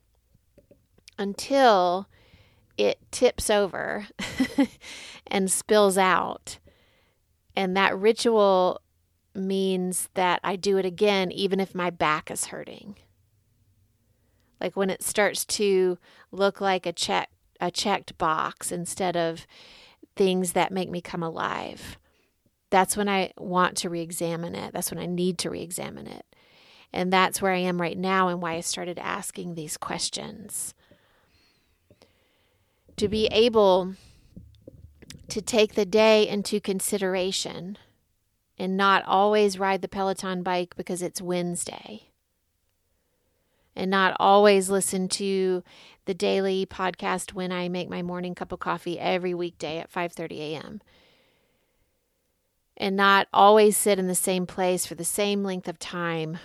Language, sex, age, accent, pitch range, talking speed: English, female, 30-49, American, 165-195 Hz, 130 wpm